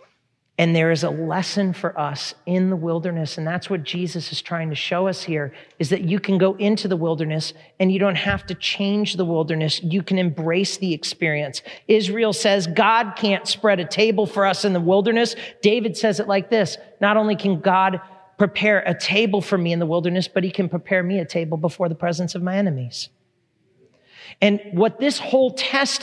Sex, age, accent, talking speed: male, 40-59, American, 205 wpm